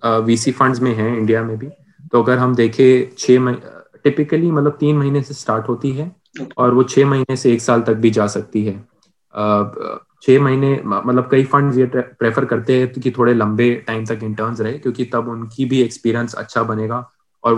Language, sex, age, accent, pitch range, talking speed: Hindi, male, 20-39, native, 110-130 Hz, 190 wpm